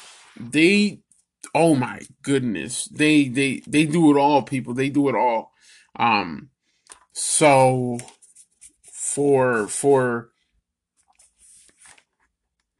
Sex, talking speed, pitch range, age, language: male, 90 wpm, 130-160 Hz, 20-39, English